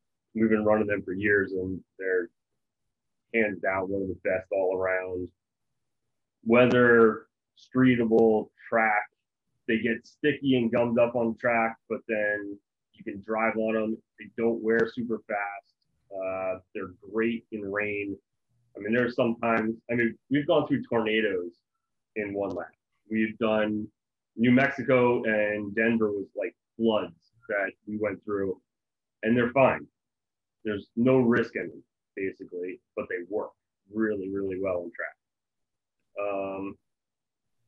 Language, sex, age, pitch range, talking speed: English, male, 30-49, 105-120 Hz, 145 wpm